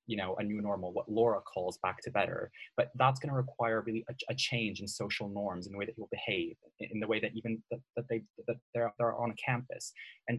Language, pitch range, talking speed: English, 105-120 Hz, 230 wpm